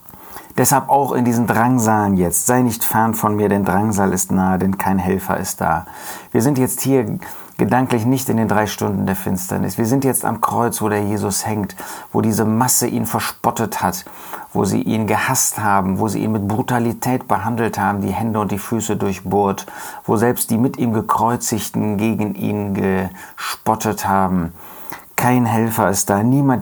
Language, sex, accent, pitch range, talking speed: German, male, German, 95-115 Hz, 180 wpm